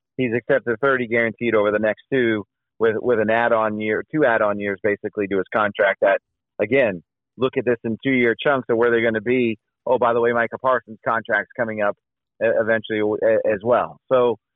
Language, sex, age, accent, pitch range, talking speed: English, male, 40-59, American, 115-135 Hz, 205 wpm